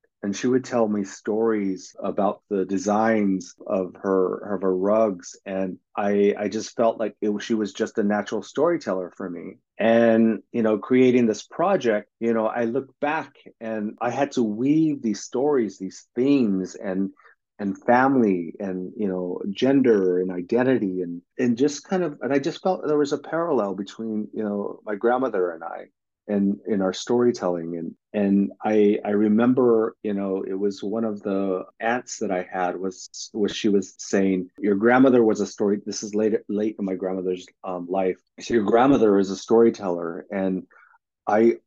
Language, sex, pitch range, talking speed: English, male, 95-115 Hz, 185 wpm